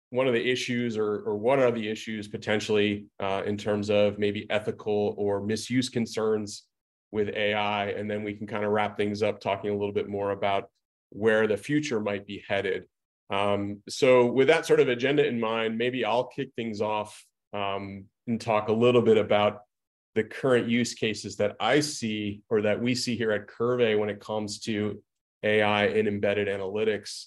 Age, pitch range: 30-49, 105-120 Hz